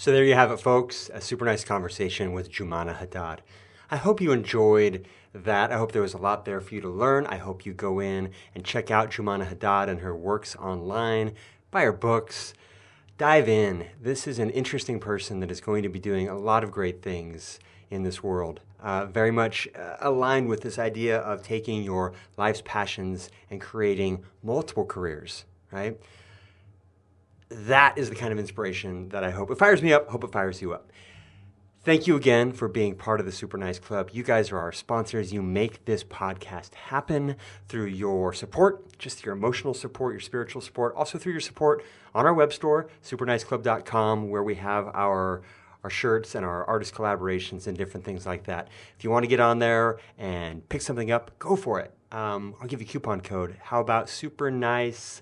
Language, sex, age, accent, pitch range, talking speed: English, male, 30-49, American, 95-120 Hz, 200 wpm